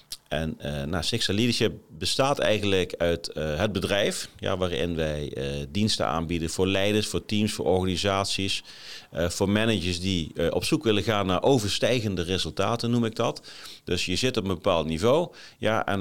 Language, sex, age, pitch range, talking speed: Dutch, male, 40-59, 90-115 Hz, 165 wpm